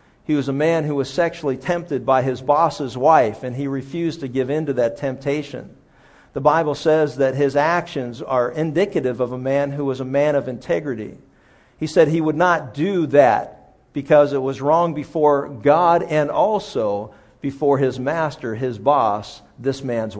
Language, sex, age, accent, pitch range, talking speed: English, male, 50-69, American, 130-155 Hz, 180 wpm